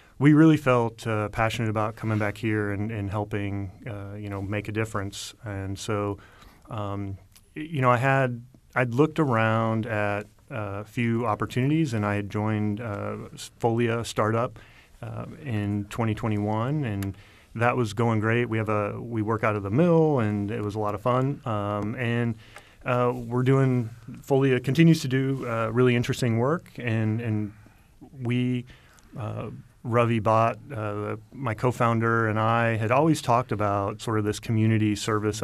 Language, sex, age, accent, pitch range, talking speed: English, male, 30-49, American, 105-125 Hz, 165 wpm